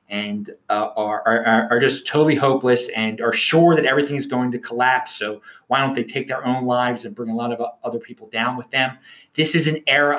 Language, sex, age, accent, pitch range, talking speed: English, male, 30-49, American, 130-170 Hz, 230 wpm